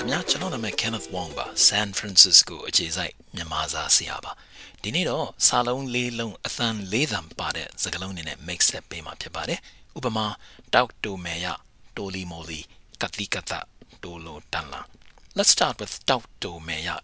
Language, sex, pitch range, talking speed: English, male, 90-115 Hz, 40 wpm